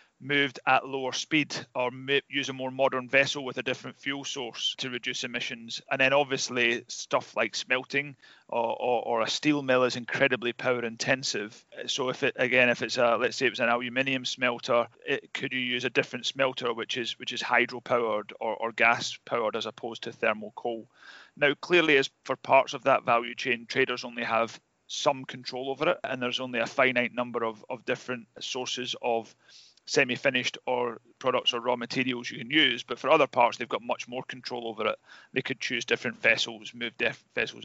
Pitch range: 120-135 Hz